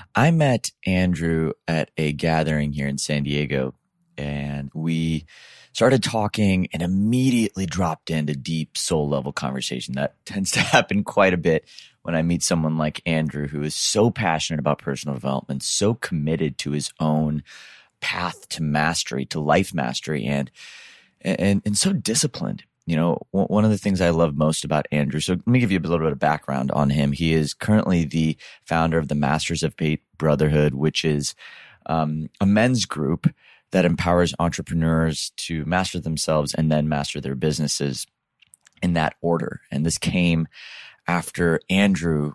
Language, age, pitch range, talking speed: English, 30-49, 75-85 Hz, 165 wpm